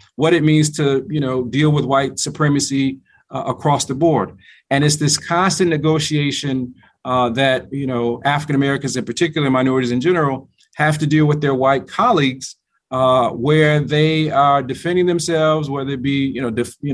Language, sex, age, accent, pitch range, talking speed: English, male, 40-59, American, 130-155 Hz, 175 wpm